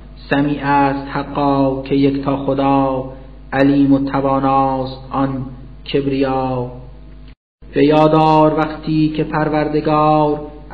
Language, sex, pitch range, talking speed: Persian, male, 140-150 Hz, 90 wpm